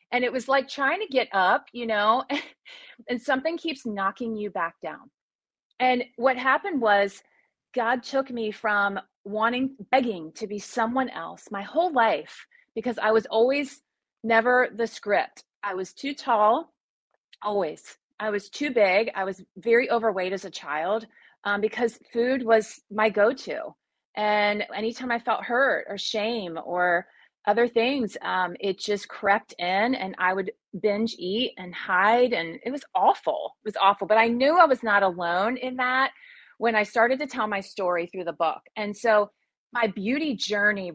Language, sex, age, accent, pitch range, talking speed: English, female, 30-49, American, 200-255 Hz, 170 wpm